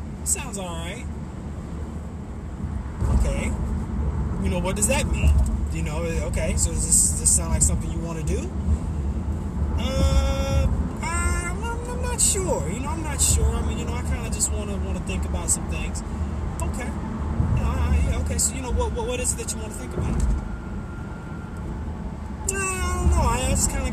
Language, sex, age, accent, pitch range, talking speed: English, male, 20-39, American, 75-80 Hz, 190 wpm